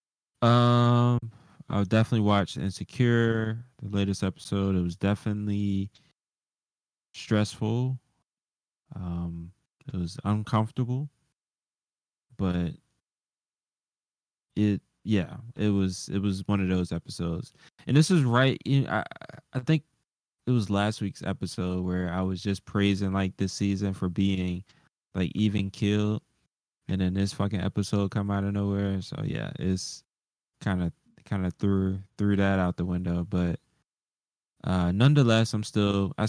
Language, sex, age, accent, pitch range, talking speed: English, male, 20-39, American, 95-115 Hz, 130 wpm